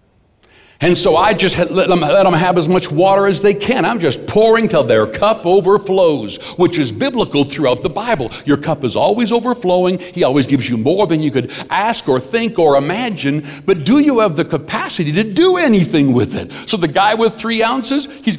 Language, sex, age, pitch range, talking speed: English, male, 60-79, 145-210 Hz, 200 wpm